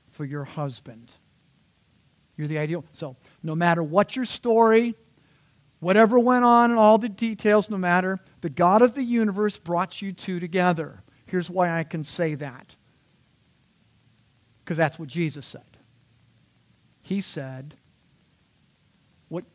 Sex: male